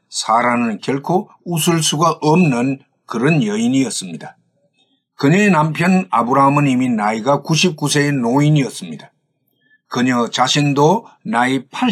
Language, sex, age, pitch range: Korean, male, 50-69, 140-185 Hz